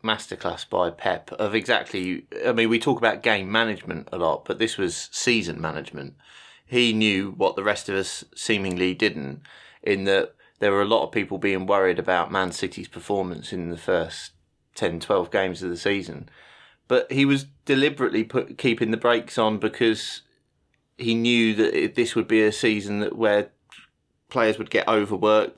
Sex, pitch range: male, 100-120 Hz